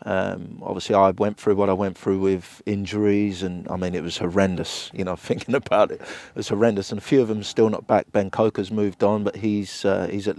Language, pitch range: English, 100-110 Hz